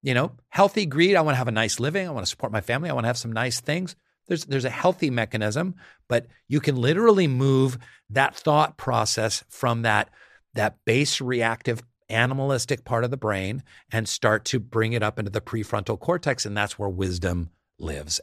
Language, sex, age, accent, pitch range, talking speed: English, male, 50-69, American, 95-130 Hz, 205 wpm